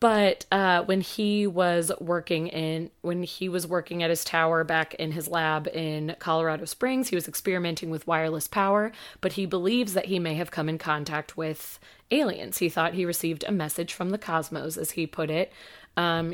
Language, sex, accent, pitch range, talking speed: English, female, American, 160-185 Hz, 195 wpm